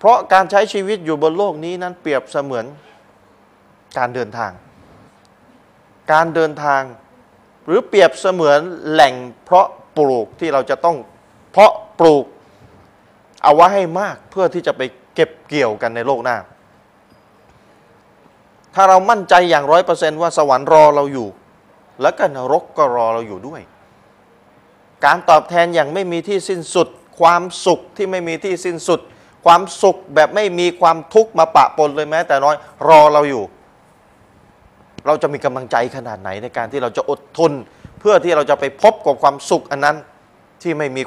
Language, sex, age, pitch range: Thai, male, 20-39, 130-175 Hz